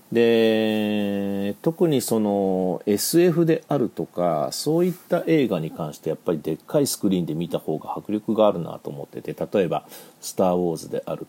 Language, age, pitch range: Japanese, 40-59, 85-115 Hz